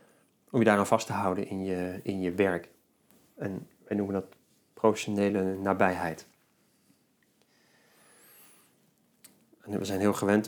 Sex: male